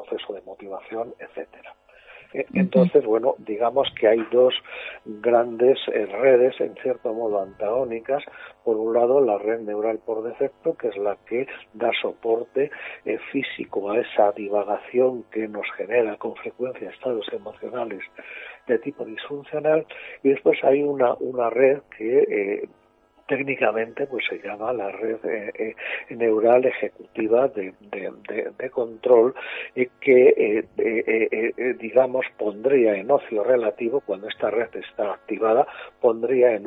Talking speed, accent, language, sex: 135 wpm, Spanish, Spanish, male